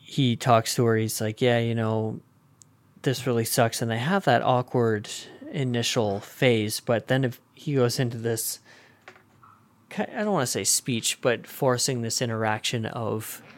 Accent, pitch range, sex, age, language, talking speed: American, 115-135 Hz, male, 30-49, English, 165 wpm